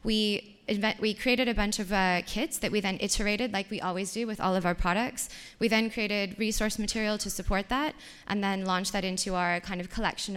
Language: English